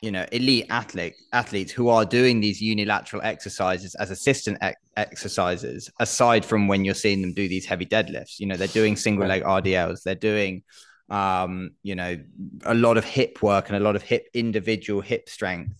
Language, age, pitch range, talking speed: English, 20-39, 95-115 Hz, 180 wpm